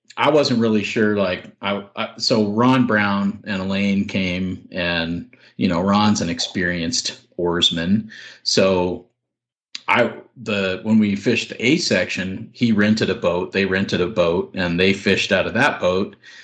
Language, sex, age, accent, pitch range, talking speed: English, male, 40-59, American, 95-115 Hz, 155 wpm